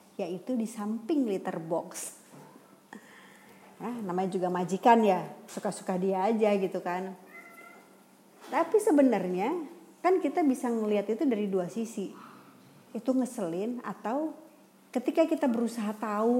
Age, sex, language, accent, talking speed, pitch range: 30-49, female, Indonesian, native, 115 wpm, 195-255 Hz